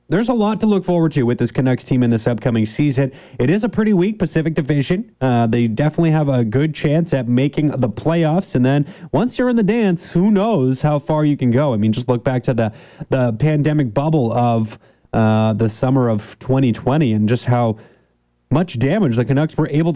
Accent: American